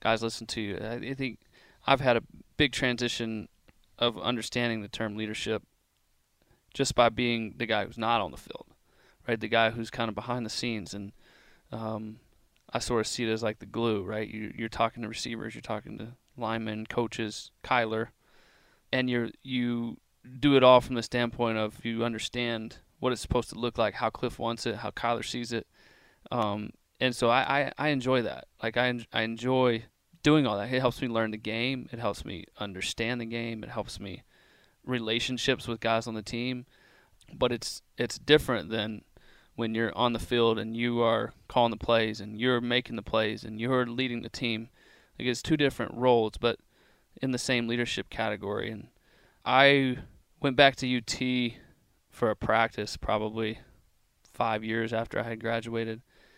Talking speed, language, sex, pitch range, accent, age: 185 wpm, English, male, 110-125 Hz, American, 30-49